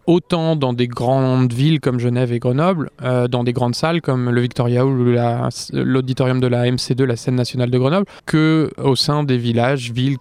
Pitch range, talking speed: 125-150 Hz, 195 wpm